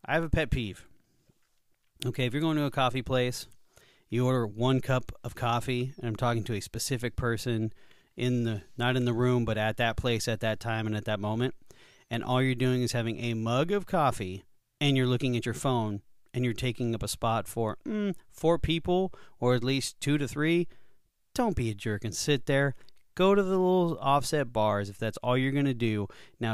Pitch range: 110-145 Hz